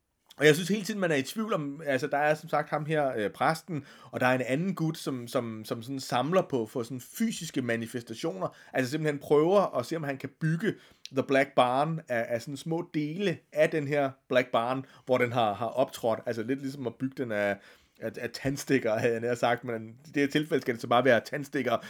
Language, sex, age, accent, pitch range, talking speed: Danish, male, 30-49, native, 120-155 Hz, 235 wpm